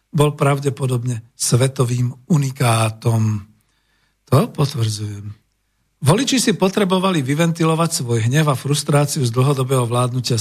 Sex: male